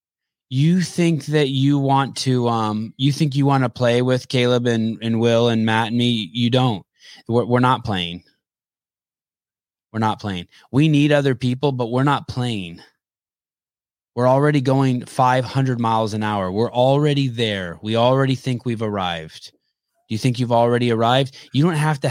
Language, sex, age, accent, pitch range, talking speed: English, male, 20-39, American, 115-140 Hz, 175 wpm